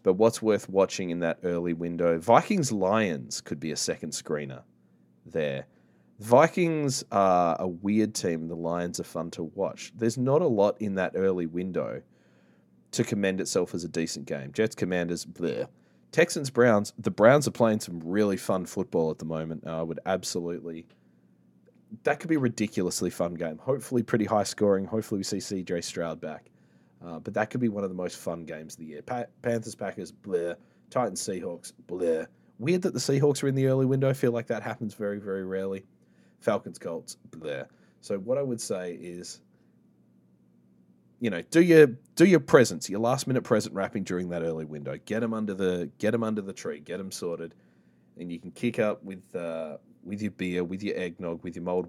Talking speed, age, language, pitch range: 195 wpm, 20-39, English, 80-110 Hz